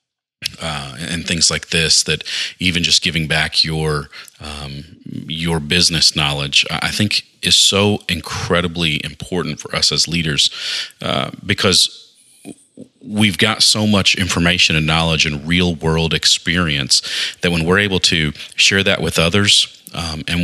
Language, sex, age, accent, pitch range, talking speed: English, male, 30-49, American, 80-90 Hz, 145 wpm